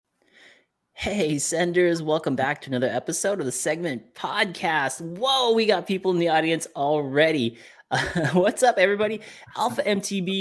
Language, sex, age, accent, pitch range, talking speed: English, male, 30-49, American, 125-180 Hz, 145 wpm